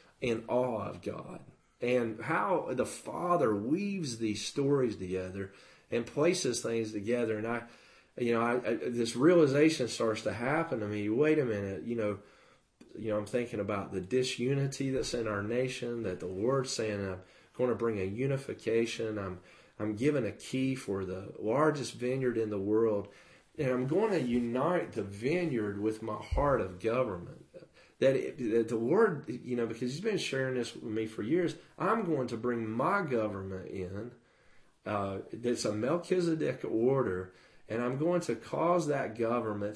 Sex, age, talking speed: male, 40-59, 170 wpm